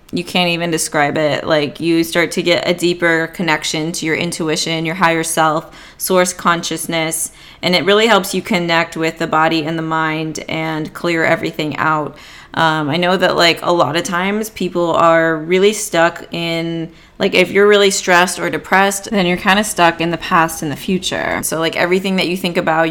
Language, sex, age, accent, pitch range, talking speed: English, female, 20-39, American, 160-180 Hz, 200 wpm